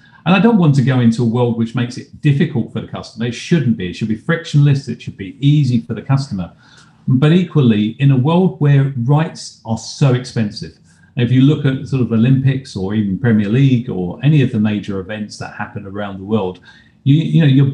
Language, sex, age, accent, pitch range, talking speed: English, male, 40-59, British, 105-135 Hz, 225 wpm